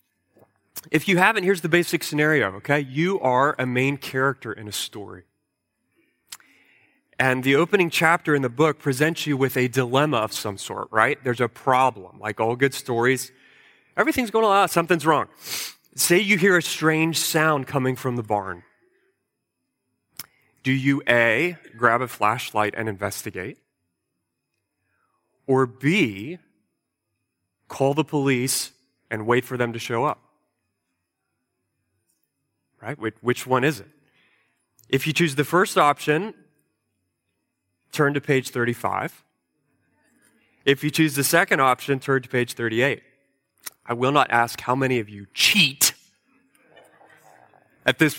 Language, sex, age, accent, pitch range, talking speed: English, male, 30-49, American, 120-155 Hz, 135 wpm